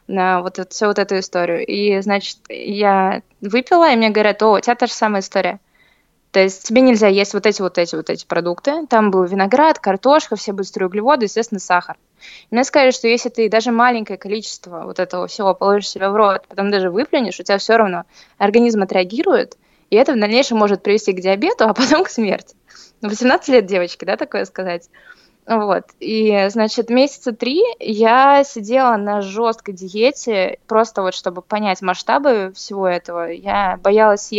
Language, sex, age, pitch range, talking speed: Russian, female, 20-39, 195-235 Hz, 180 wpm